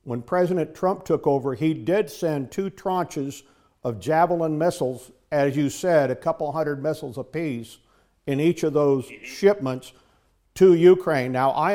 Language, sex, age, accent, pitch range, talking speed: English, male, 50-69, American, 135-175 Hz, 155 wpm